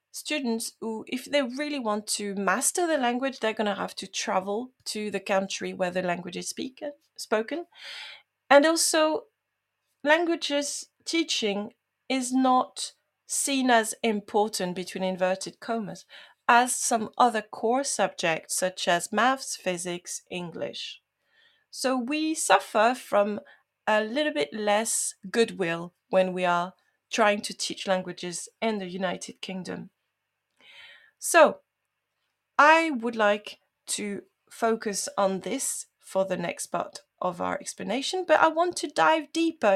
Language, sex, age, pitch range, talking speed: English, female, 30-49, 195-285 Hz, 135 wpm